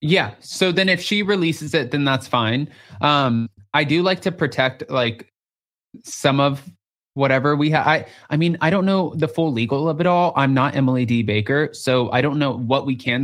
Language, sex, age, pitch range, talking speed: English, male, 20-39, 120-150 Hz, 210 wpm